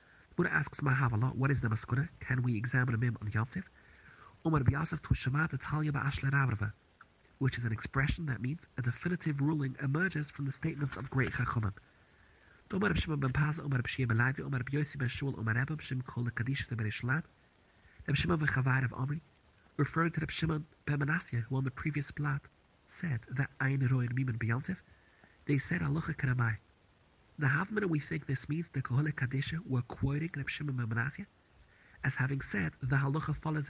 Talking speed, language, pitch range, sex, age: 180 wpm, English, 120-155 Hz, male, 30-49